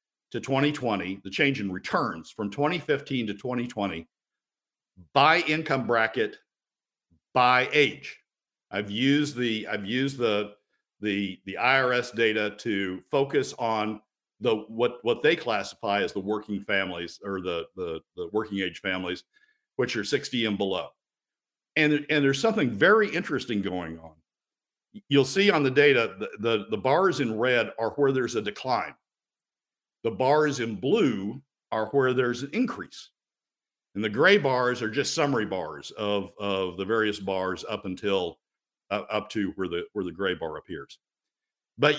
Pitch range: 100-140 Hz